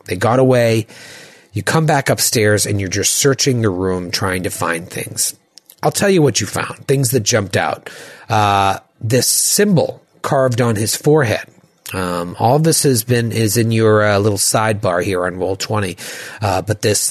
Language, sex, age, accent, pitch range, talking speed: English, male, 40-59, American, 100-140 Hz, 185 wpm